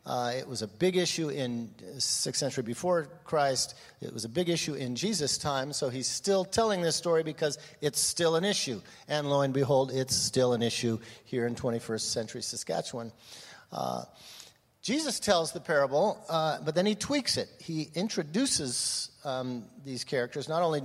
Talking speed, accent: 175 wpm, American